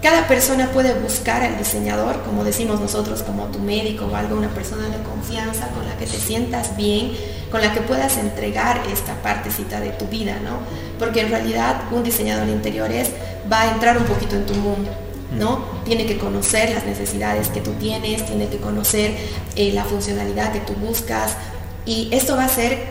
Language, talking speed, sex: Spanish, 190 wpm, female